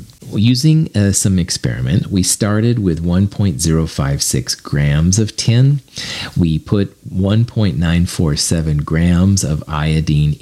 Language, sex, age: English, male, 40-59